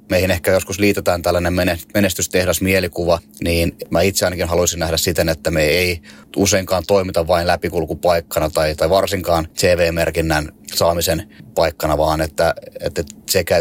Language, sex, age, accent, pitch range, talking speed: Finnish, male, 30-49, native, 85-100 Hz, 130 wpm